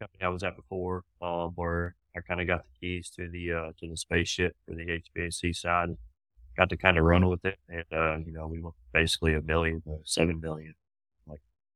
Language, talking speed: English, 220 wpm